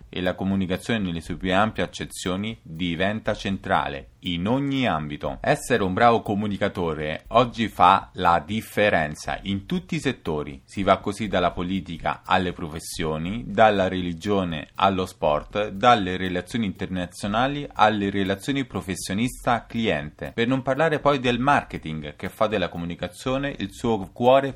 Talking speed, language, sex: 135 wpm, Italian, male